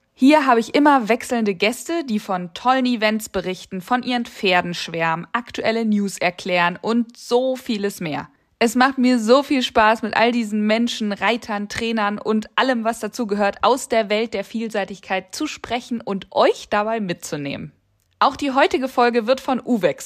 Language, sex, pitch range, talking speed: German, female, 195-255 Hz, 170 wpm